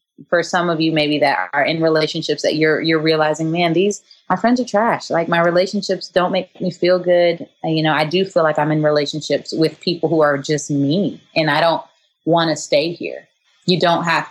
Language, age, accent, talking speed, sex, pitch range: English, 20-39, American, 220 wpm, female, 155-180 Hz